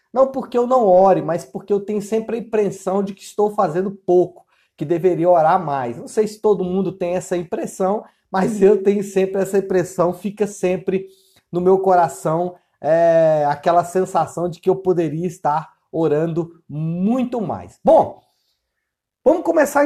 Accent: Brazilian